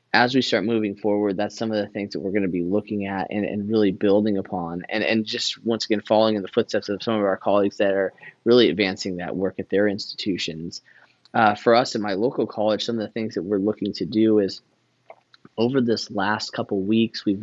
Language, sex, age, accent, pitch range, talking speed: English, male, 20-39, American, 95-110 Hz, 235 wpm